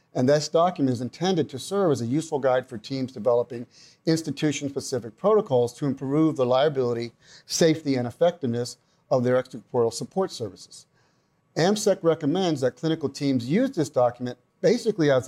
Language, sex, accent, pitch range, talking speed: English, male, American, 125-160 Hz, 150 wpm